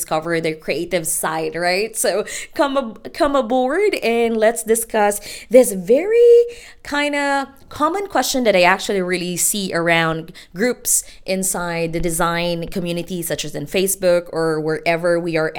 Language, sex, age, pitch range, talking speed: English, female, 20-39, 170-225 Hz, 140 wpm